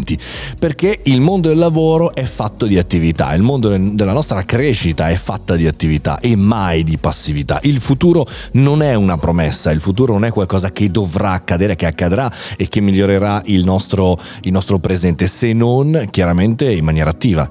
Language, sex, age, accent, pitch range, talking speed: Italian, male, 40-59, native, 85-115 Hz, 175 wpm